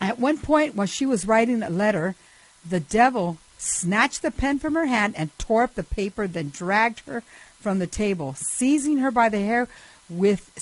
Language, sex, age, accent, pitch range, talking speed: English, female, 60-79, American, 175-225 Hz, 190 wpm